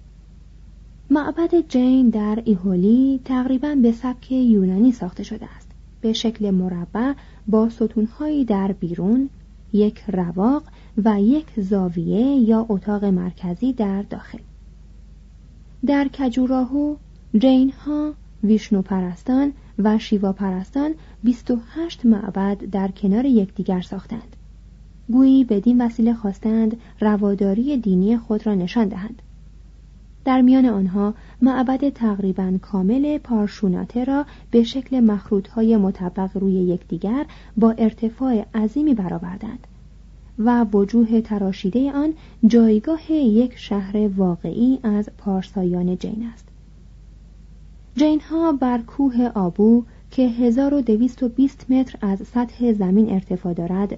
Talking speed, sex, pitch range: 110 wpm, female, 195-255 Hz